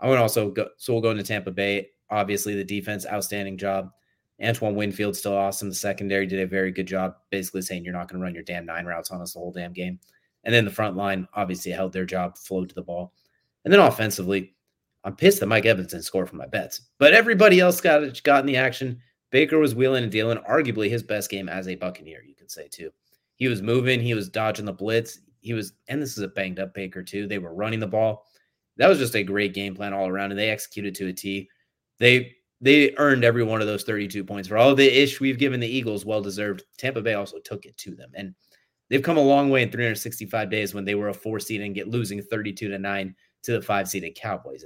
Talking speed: 245 wpm